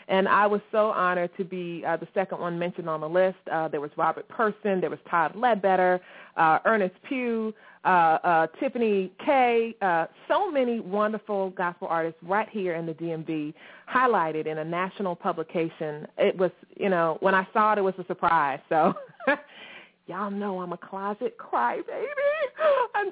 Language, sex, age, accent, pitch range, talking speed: English, female, 30-49, American, 180-235 Hz, 175 wpm